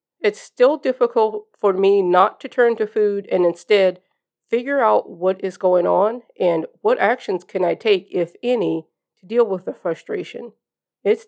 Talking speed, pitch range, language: 170 wpm, 180-235 Hz, English